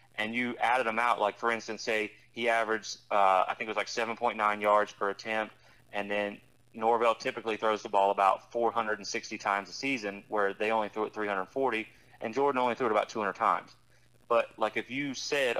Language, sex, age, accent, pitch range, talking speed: English, male, 30-49, American, 105-125 Hz, 200 wpm